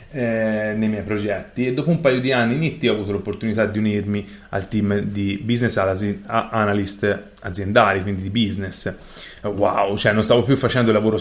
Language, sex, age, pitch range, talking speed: Italian, male, 20-39, 100-120 Hz, 180 wpm